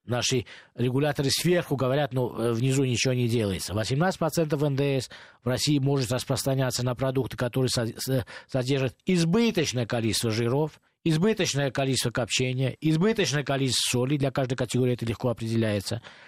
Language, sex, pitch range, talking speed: Russian, male, 125-155 Hz, 125 wpm